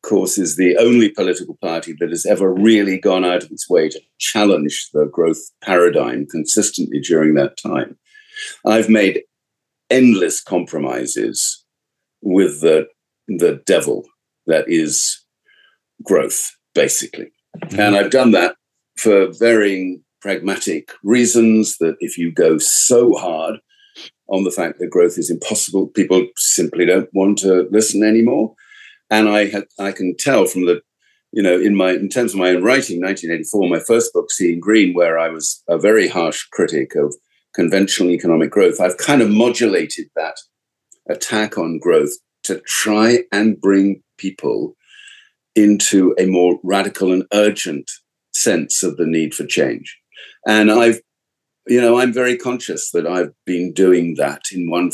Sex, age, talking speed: male, 50-69, 150 wpm